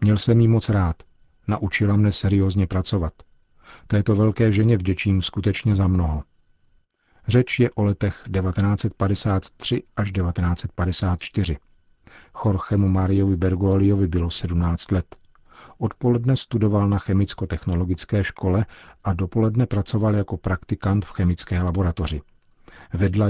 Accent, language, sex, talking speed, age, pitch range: native, Czech, male, 110 wpm, 50-69, 90-105 Hz